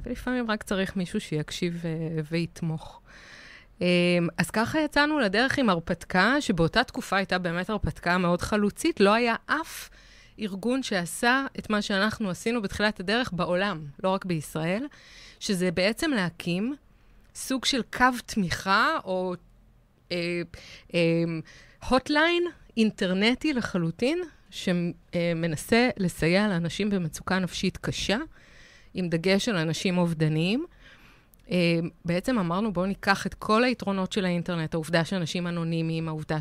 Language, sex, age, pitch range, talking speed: Hebrew, female, 20-39, 170-230 Hz, 120 wpm